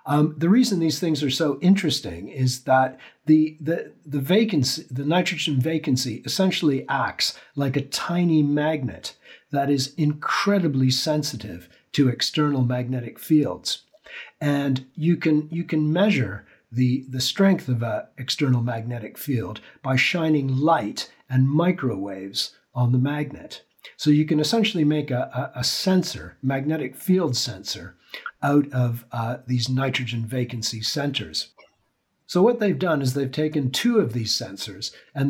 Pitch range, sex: 125-160 Hz, male